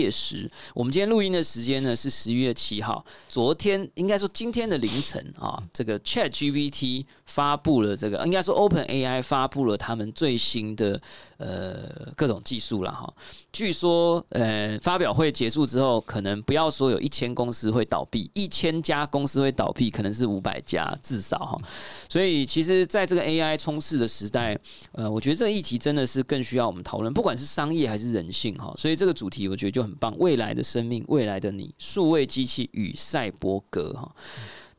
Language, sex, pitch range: Chinese, male, 115-150 Hz